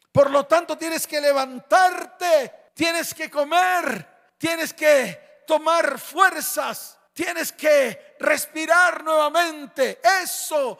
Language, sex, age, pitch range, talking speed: Spanish, male, 50-69, 245-335 Hz, 100 wpm